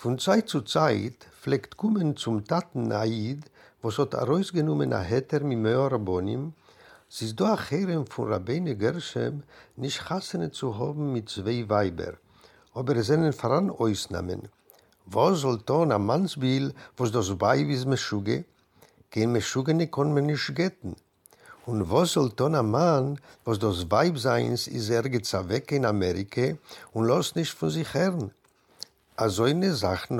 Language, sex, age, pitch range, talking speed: French, male, 60-79, 110-150 Hz, 145 wpm